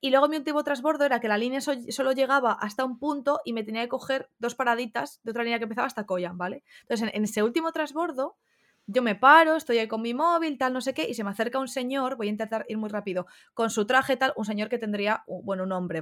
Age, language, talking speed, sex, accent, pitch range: 20-39, Spanish, 260 wpm, female, Spanish, 200-260 Hz